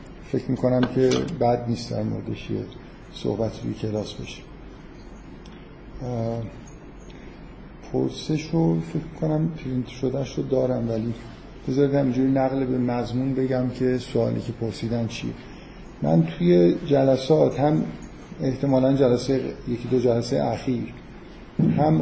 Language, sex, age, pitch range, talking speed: Persian, male, 50-69, 115-140 Hz, 110 wpm